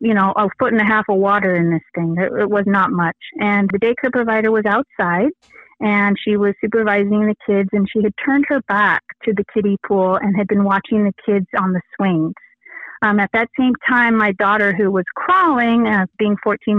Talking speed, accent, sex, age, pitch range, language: 220 wpm, American, female, 30-49, 185-220 Hz, English